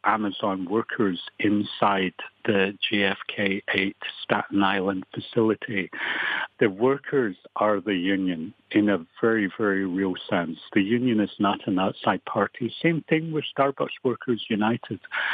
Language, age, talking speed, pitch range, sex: English, 70-89, 125 wpm, 100-125 Hz, male